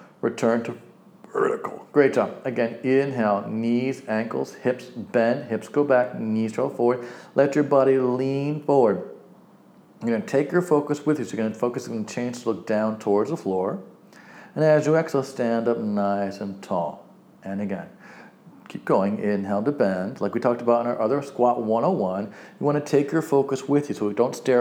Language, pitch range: English, 110-135 Hz